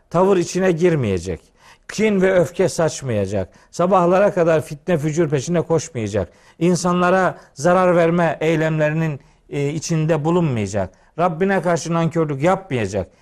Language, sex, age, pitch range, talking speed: Turkish, male, 50-69, 135-185 Hz, 105 wpm